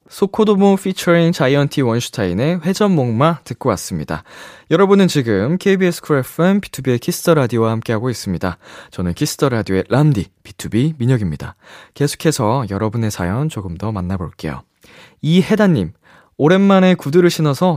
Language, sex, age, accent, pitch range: Korean, male, 20-39, native, 110-165 Hz